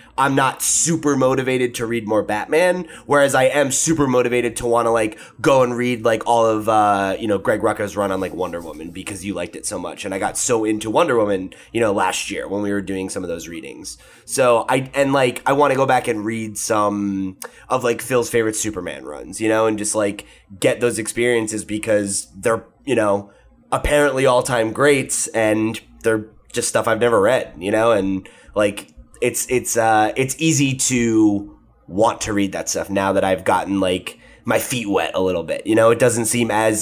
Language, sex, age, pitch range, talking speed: English, male, 20-39, 110-130 Hz, 210 wpm